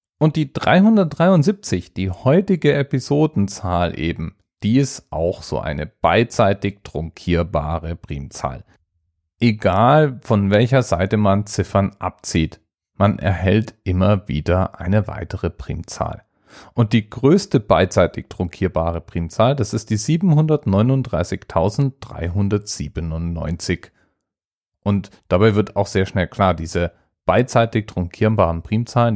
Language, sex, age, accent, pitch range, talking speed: German, male, 40-59, German, 85-110 Hz, 105 wpm